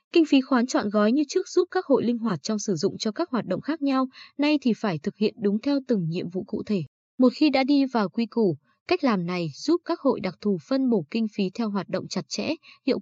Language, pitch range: Vietnamese, 195-255 Hz